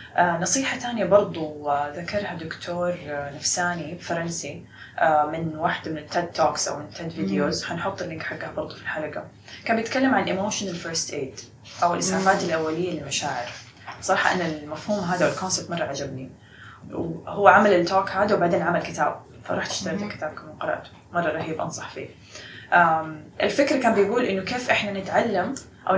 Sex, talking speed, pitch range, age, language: female, 150 wpm, 160-210 Hz, 20-39, Arabic